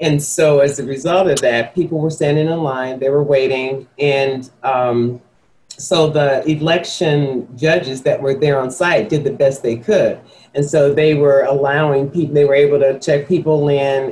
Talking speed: 185 wpm